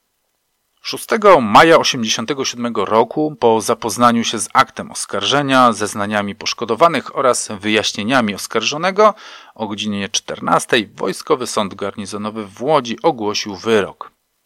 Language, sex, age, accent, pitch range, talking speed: Polish, male, 40-59, native, 100-120 Hz, 105 wpm